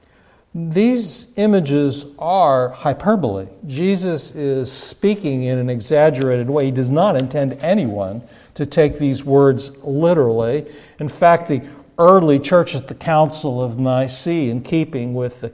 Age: 50-69